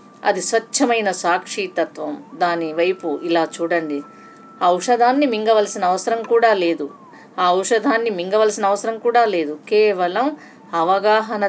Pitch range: 175-235 Hz